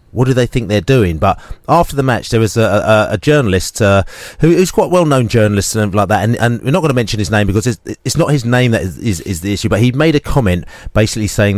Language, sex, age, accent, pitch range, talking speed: English, male, 30-49, British, 100-135 Hz, 275 wpm